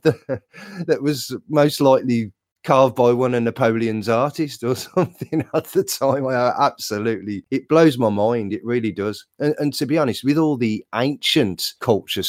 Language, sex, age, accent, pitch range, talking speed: English, male, 30-49, British, 105-135 Hz, 160 wpm